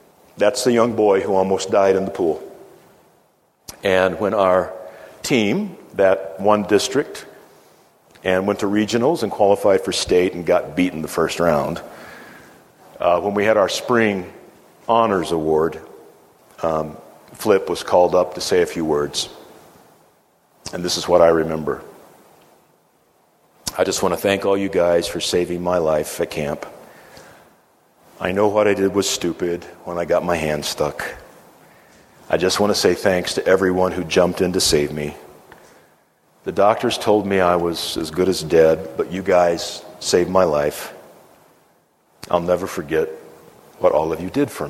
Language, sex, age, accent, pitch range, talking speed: English, male, 50-69, American, 85-105 Hz, 160 wpm